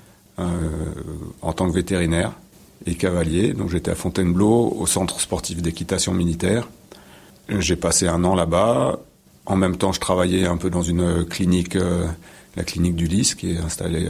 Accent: French